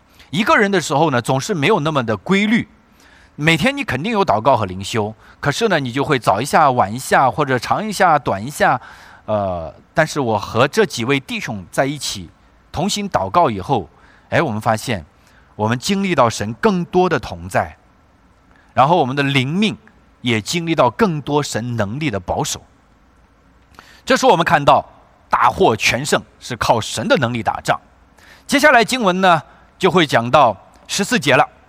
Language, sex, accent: English, male, Chinese